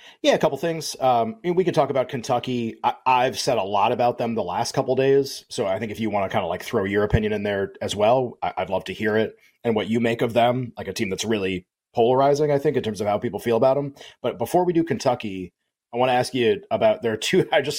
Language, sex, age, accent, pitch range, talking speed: English, male, 30-49, American, 115-150 Hz, 285 wpm